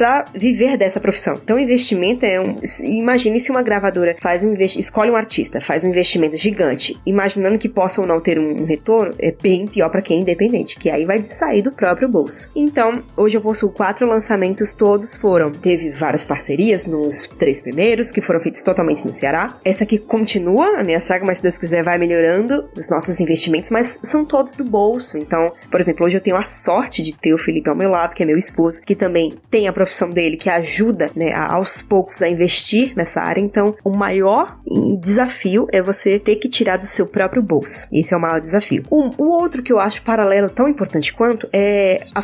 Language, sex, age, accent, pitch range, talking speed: Portuguese, female, 20-39, Brazilian, 175-225 Hz, 210 wpm